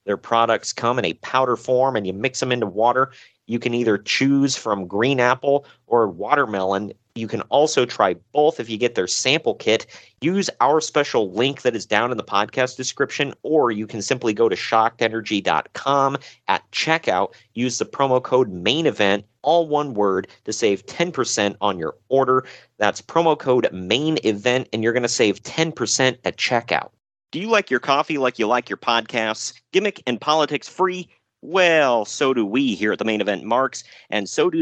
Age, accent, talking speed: 40-59, American, 185 wpm